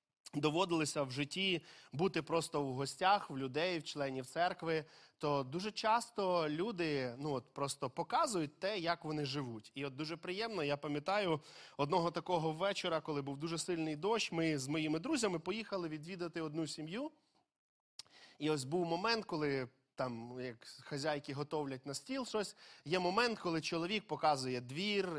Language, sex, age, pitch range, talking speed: Ukrainian, male, 20-39, 145-190 Hz, 150 wpm